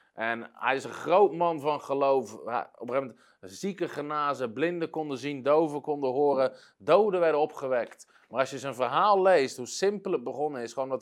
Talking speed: 175 wpm